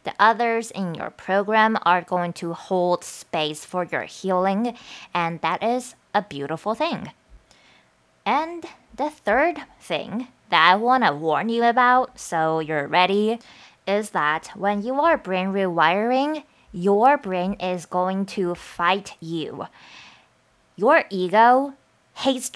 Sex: female